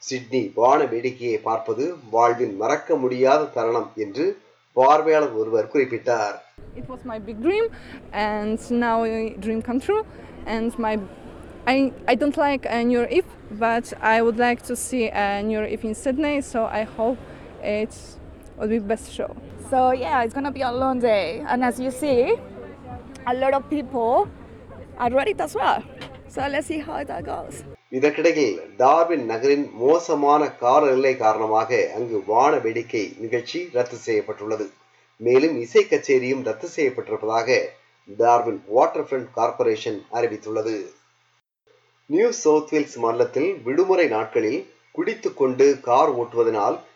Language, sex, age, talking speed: Tamil, female, 20-39, 140 wpm